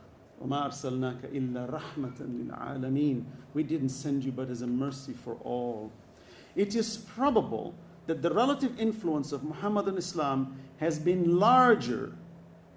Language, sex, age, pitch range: English, male, 50-69, 130-175 Hz